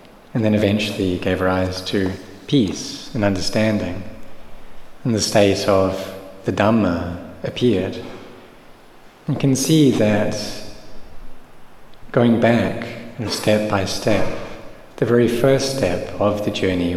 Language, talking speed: English, 115 wpm